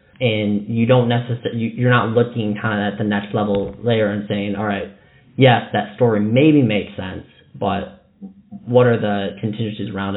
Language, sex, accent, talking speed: English, male, American, 185 wpm